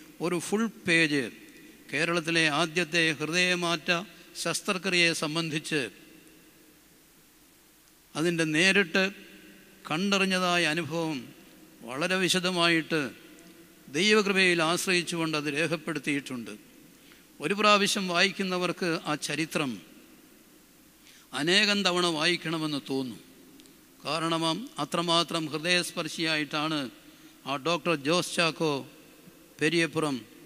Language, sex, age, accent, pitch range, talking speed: Malayalam, male, 60-79, native, 160-185 Hz, 70 wpm